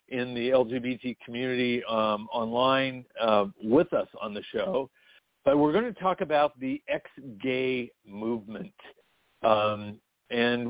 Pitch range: 115-145 Hz